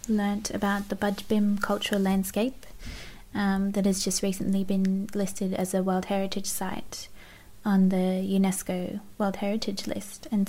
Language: English